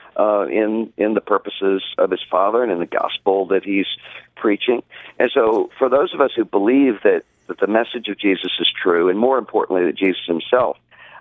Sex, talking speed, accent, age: male, 200 wpm, American, 50-69